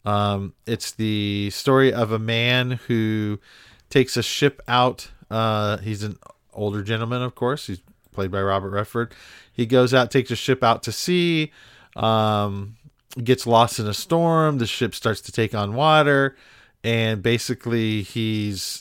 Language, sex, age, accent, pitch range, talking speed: English, male, 40-59, American, 110-135 Hz, 155 wpm